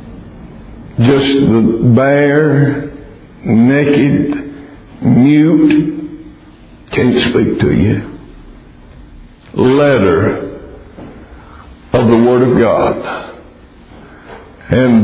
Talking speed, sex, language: 65 wpm, male, English